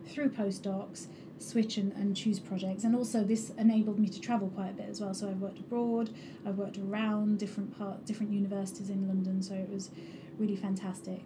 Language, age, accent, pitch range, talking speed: English, 30-49, British, 200-230 Hz, 195 wpm